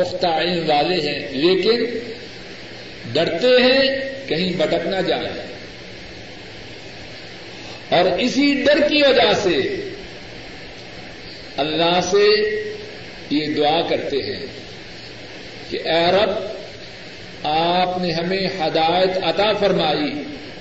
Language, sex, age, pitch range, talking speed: Urdu, male, 50-69, 165-225 Hz, 90 wpm